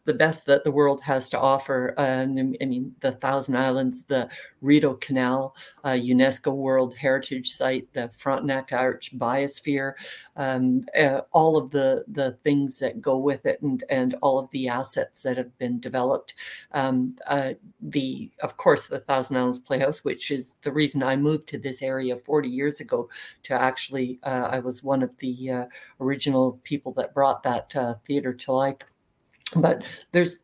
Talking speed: 175 wpm